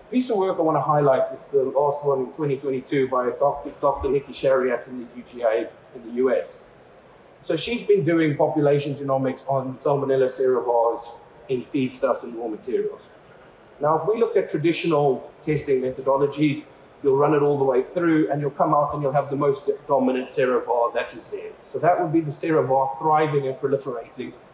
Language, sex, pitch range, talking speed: English, male, 135-175 Hz, 185 wpm